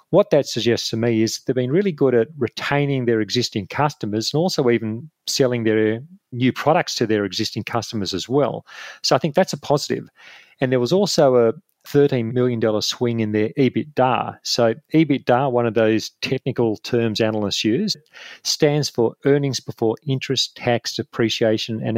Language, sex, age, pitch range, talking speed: English, male, 40-59, 110-140 Hz, 170 wpm